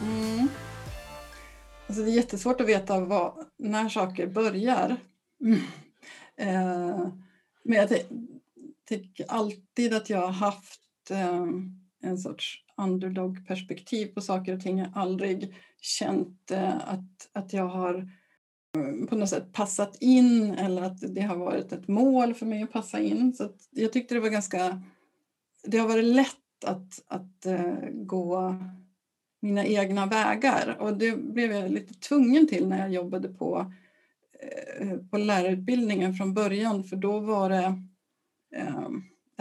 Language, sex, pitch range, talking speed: Swedish, female, 185-240 Hz, 135 wpm